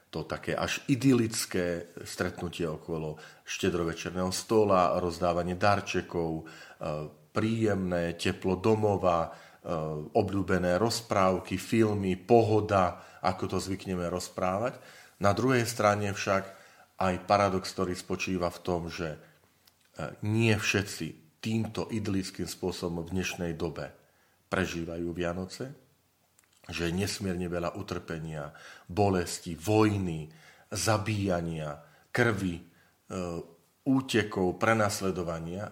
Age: 40-59